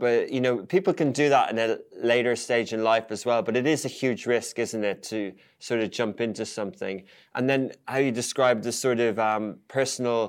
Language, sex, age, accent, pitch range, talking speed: English, male, 20-39, British, 115-135 Hz, 225 wpm